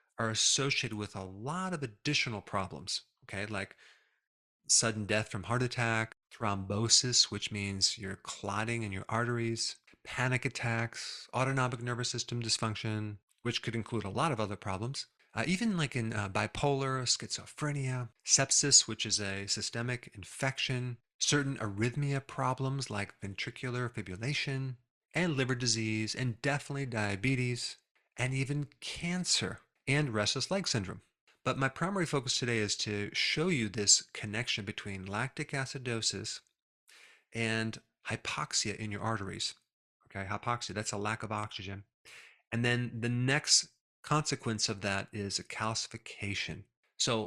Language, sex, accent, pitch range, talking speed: English, male, American, 105-130 Hz, 135 wpm